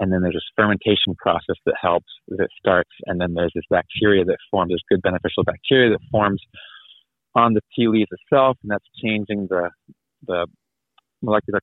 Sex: male